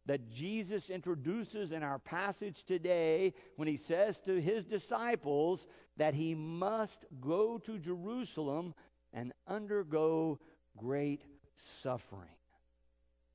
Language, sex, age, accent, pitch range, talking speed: English, male, 50-69, American, 135-195 Hz, 105 wpm